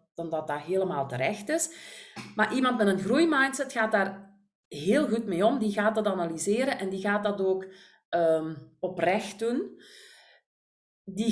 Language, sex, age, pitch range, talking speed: Dutch, female, 40-59, 190-255 Hz, 160 wpm